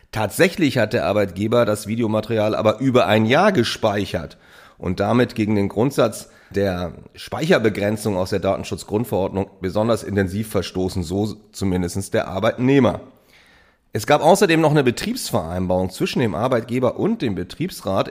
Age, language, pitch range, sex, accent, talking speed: 30-49, German, 100-130 Hz, male, German, 135 wpm